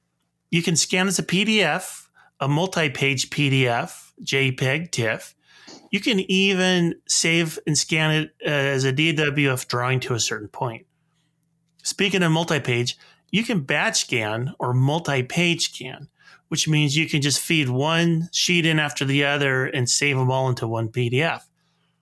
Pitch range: 135-170 Hz